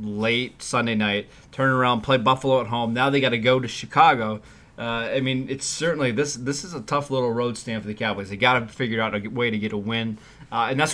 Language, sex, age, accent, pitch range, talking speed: English, male, 20-39, American, 110-135 Hz, 250 wpm